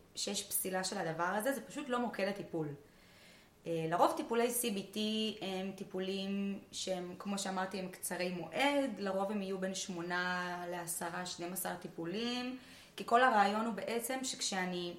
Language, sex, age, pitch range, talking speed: Hebrew, female, 20-39, 180-235 Hz, 135 wpm